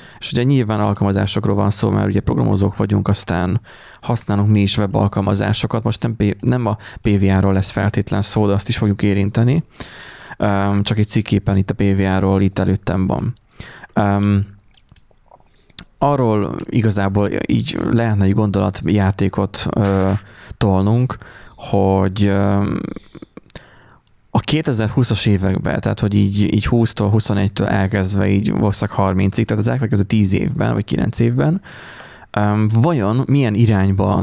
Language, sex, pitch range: Hungarian, male, 100-115 Hz